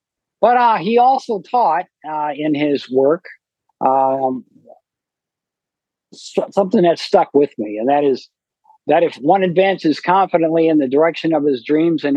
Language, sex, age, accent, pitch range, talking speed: English, male, 60-79, American, 125-150 Hz, 150 wpm